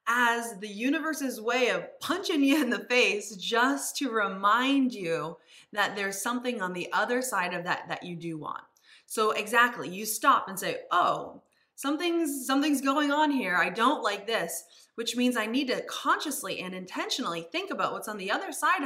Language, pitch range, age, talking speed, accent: English, 185-255 Hz, 20-39, 185 wpm, American